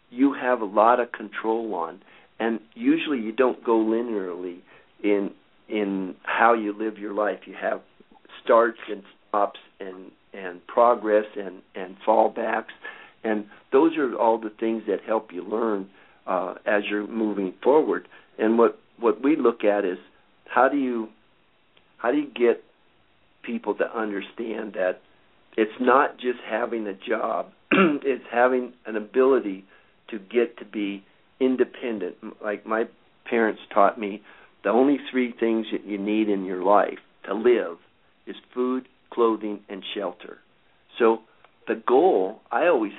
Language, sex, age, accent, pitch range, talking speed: English, male, 50-69, American, 105-125 Hz, 150 wpm